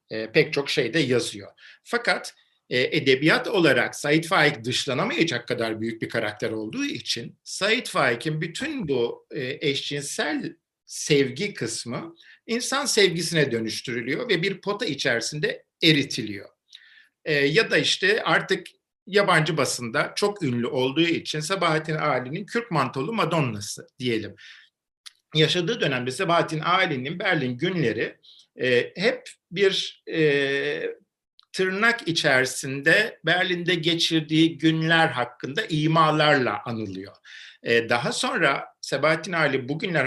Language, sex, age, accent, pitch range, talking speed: Turkish, male, 50-69, native, 130-185 Hz, 110 wpm